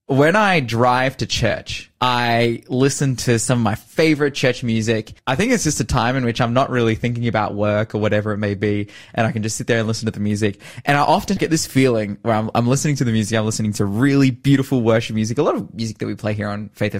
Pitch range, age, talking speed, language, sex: 115-145 Hz, 20-39, 260 wpm, English, male